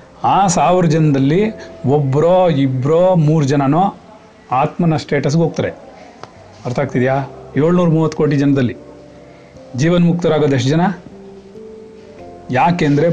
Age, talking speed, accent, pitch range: 40-59, 90 wpm, native, 130-170 Hz